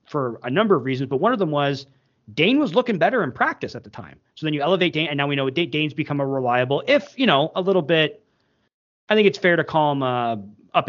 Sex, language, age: male, English, 30-49